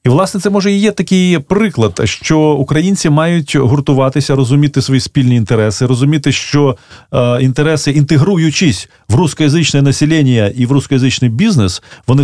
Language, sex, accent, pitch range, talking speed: Russian, male, native, 115-155 Hz, 140 wpm